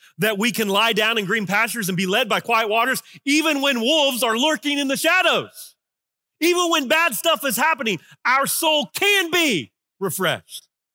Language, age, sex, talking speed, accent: English, 40-59, male, 180 wpm, American